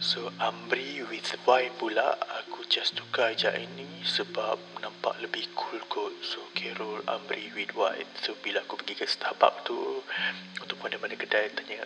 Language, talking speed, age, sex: Malay, 155 wpm, 30-49, male